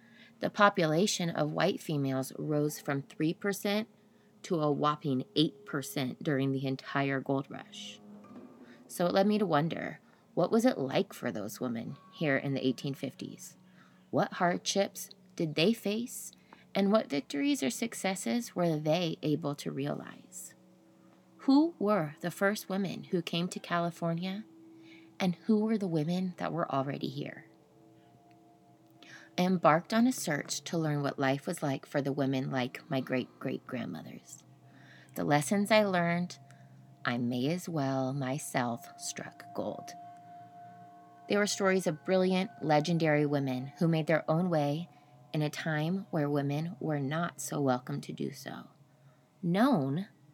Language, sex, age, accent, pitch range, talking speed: English, female, 20-39, American, 140-190 Hz, 145 wpm